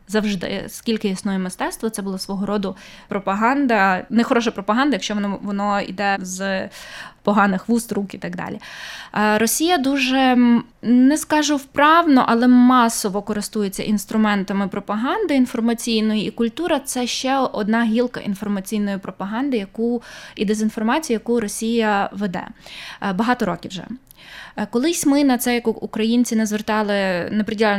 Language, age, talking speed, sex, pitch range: Ukrainian, 20-39, 130 wpm, female, 200-250 Hz